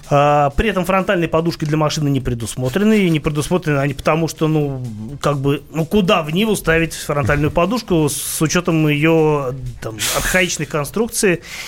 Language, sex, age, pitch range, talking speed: Russian, male, 30-49, 135-170 Hz, 155 wpm